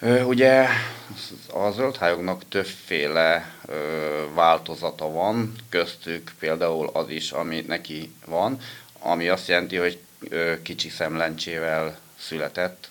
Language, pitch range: Hungarian, 80-95 Hz